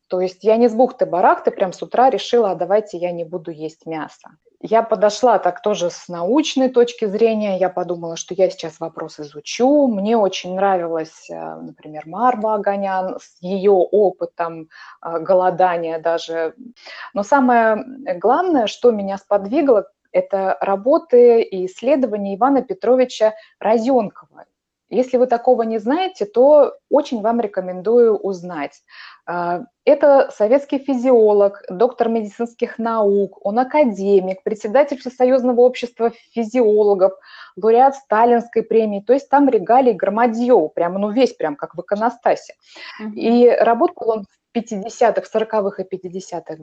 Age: 20-39